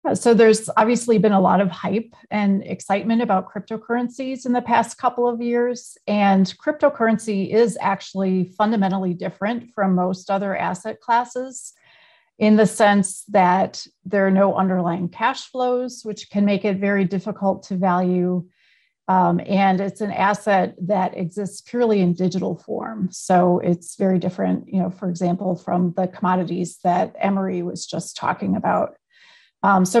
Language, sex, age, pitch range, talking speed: English, female, 30-49, 185-220 Hz, 155 wpm